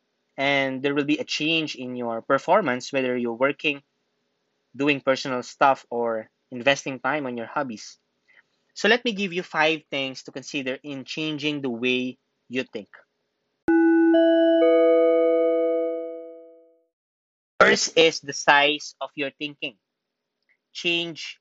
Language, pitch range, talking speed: English, 130-155 Hz, 125 wpm